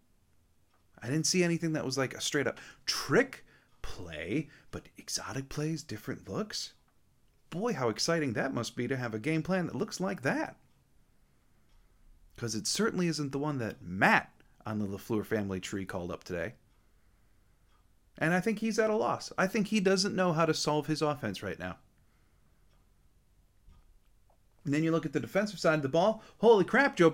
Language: English